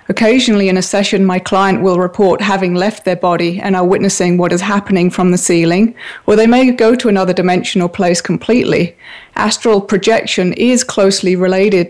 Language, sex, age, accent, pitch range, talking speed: English, female, 30-49, British, 180-210 Hz, 180 wpm